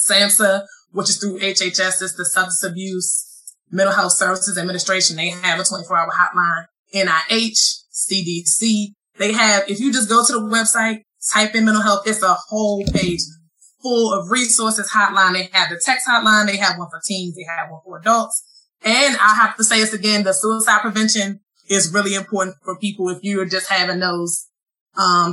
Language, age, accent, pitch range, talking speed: English, 20-39, American, 185-235 Hz, 180 wpm